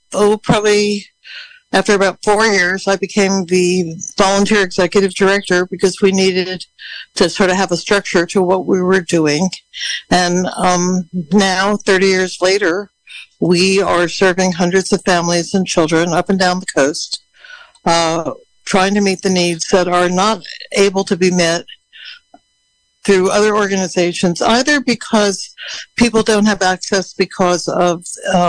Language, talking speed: English, 145 wpm